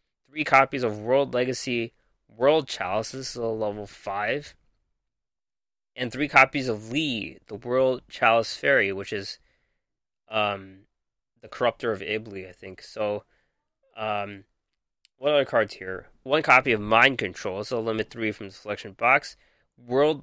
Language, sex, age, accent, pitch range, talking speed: English, male, 20-39, American, 105-130 Hz, 145 wpm